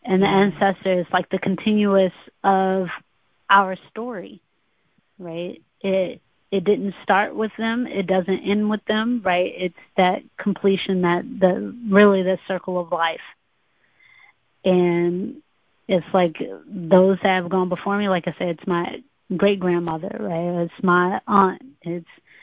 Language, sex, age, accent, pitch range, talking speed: English, female, 30-49, American, 175-200 Hz, 140 wpm